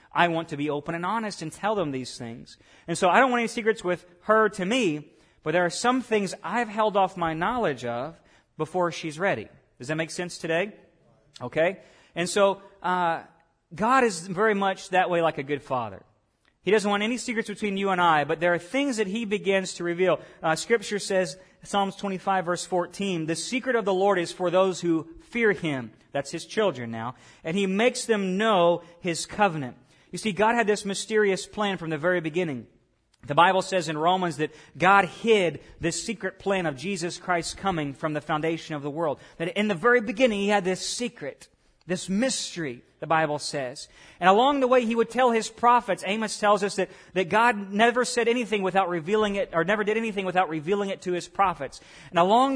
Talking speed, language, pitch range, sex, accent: 210 wpm, English, 160-210 Hz, male, American